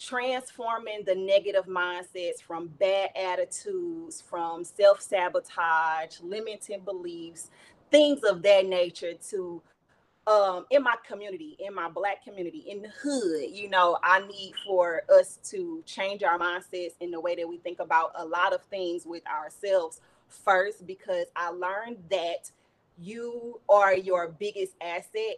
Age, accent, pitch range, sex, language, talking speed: 30-49, American, 175-205 Hz, female, English, 140 wpm